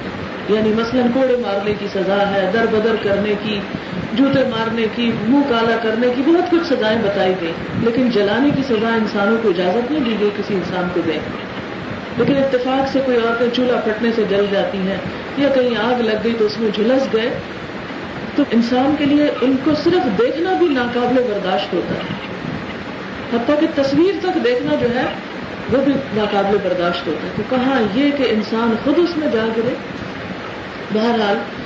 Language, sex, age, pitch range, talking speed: Urdu, female, 40-59, 205-260 Hz, 180 wpm